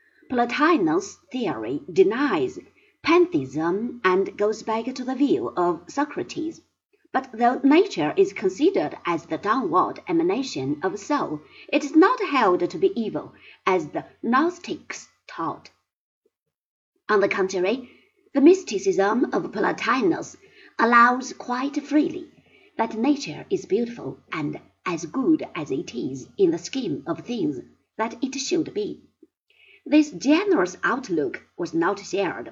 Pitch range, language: 230-355 Hz, Chinese